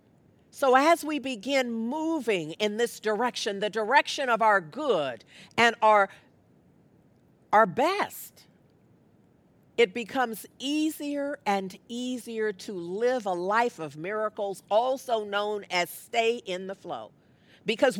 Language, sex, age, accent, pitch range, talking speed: English, female, 50-69, American, 225-335 Hz, 120 wpm